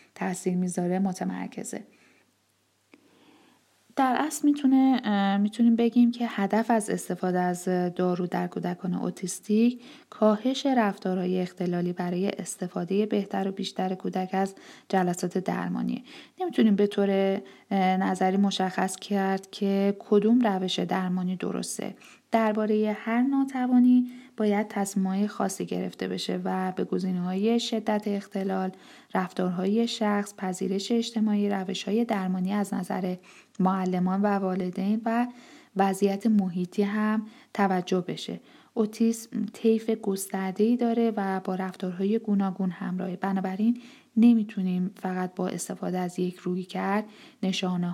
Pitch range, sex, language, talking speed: 185-220 Hz, female, Persian, 110 wpm